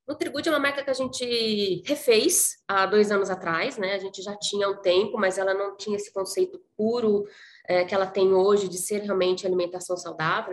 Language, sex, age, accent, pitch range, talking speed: Portuguese, female, 20-39, Brazilian, 185-230 Hz, 205 wpm